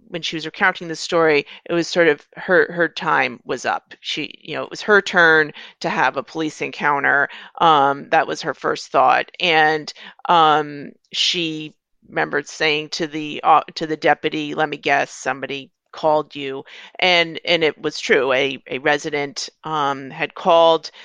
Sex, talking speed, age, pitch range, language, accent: female, 175 wpm, 40-59, 150-175 Hz, English, American